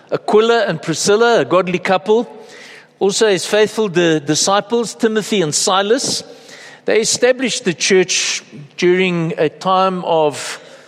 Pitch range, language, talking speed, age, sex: 180-230 Hz, English, 115 wpm, 60-79, male